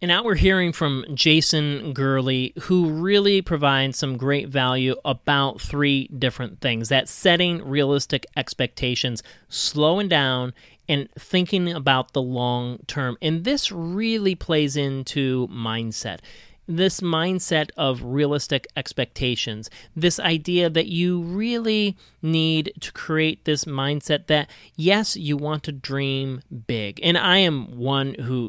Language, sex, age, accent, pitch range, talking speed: English, male, 30-49, American, 130-175 Hz, 130 wpm